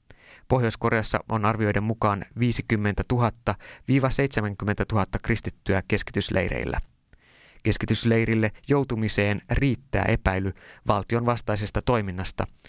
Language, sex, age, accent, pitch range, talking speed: Finnish, male, 30-49, native, 100-120 Hz, 75 wpm